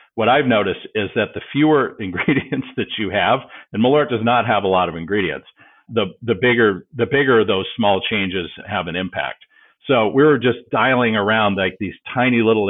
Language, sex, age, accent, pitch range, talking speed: English, male, 50-69, American, 100-130 Hz, 185 wpm